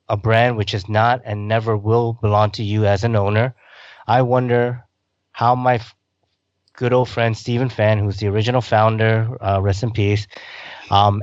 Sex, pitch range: male, 100-120 Hz